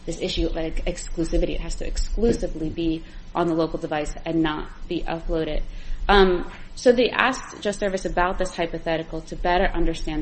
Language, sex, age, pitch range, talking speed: English, female, 20-39, 160-185 Hz, 175 wpm